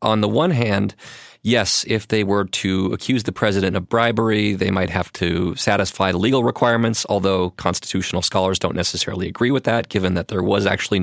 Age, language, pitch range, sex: 30-49, English, 90-110 Hz, male